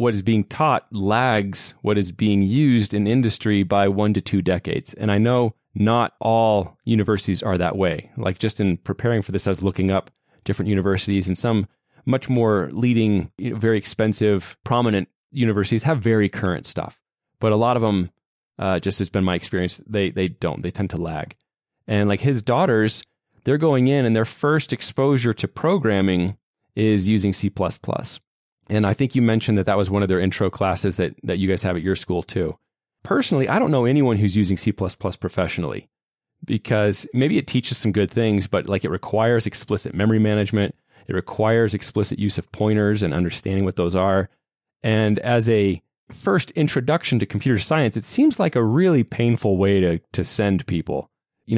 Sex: male